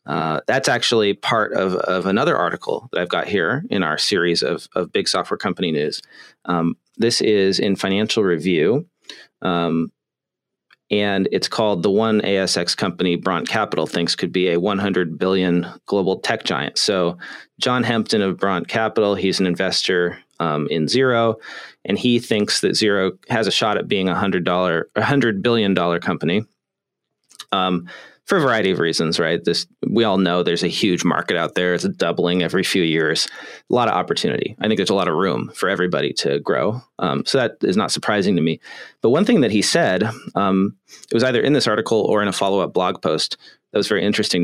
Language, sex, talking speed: English, male, 195 wpm